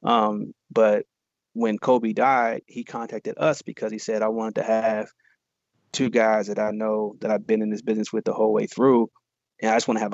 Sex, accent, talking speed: male, American, 220 wpm